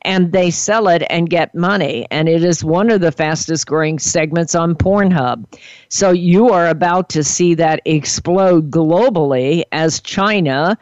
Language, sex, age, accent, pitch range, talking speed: English, female, 50-69, American, 150-175 Hz, 160 wpm